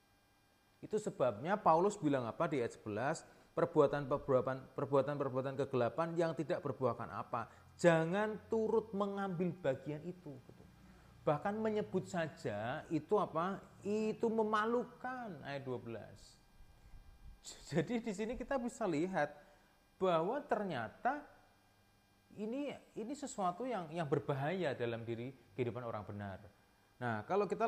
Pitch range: 125-210 Hz